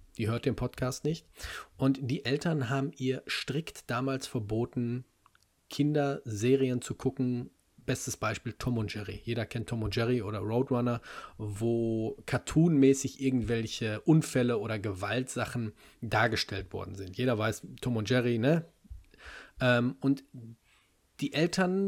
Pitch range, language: 115-145 Hz, German